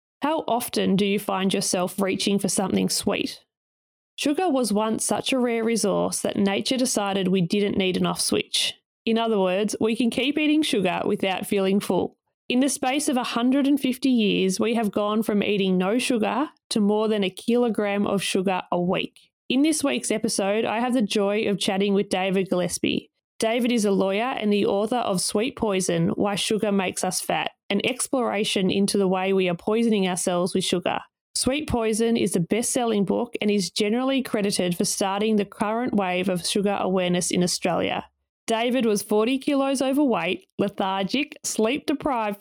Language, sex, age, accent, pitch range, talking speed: English, female, 20-39, Australian, 195-235 Hz, 175 wpm